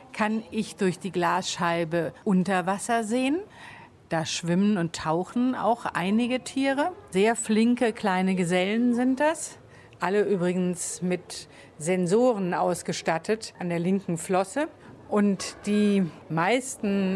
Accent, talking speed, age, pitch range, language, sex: German, 115 wpm, 50-69, 180-225 Hz, German, female